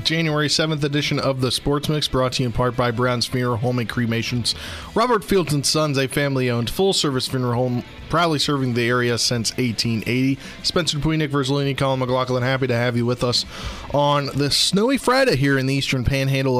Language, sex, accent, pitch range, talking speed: English, male, American, 125-150 Hz, 195 wpm